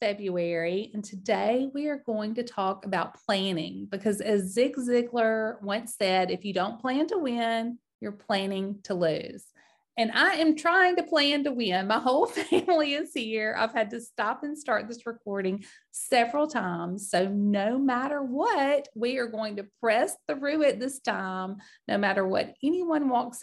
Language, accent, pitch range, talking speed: English, American, 200-260 Hz, 170 wpm